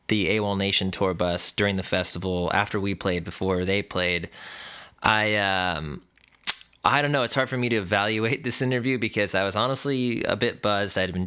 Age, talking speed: 20-39, 190 wpm